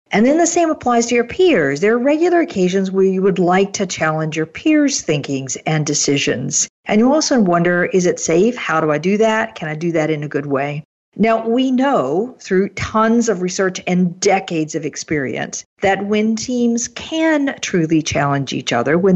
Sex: female